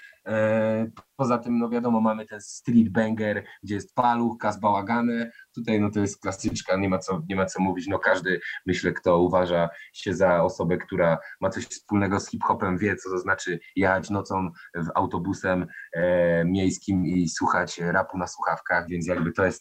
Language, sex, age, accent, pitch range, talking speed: Polish, male, 20-39, native, 90-110 Hz, 175 wpm